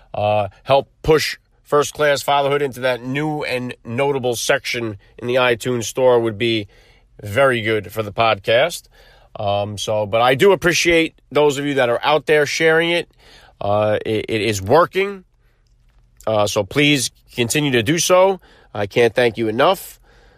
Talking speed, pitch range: 160 wpm, 115-150 Hz